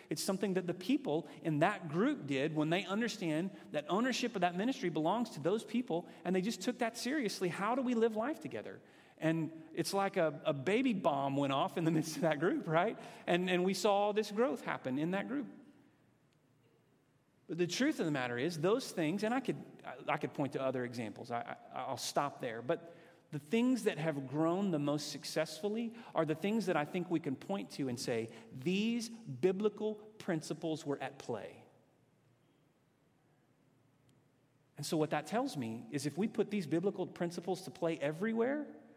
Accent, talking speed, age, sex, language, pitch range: American, 195 wpm, 40-59, male, English, 145-205 Hz